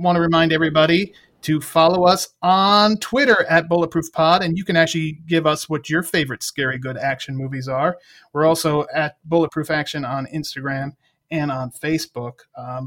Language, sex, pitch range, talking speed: English, male, 145-175 Hz, 175 wpm